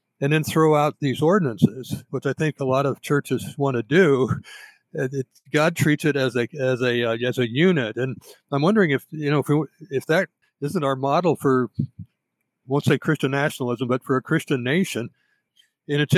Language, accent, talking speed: English, American, 190 wpm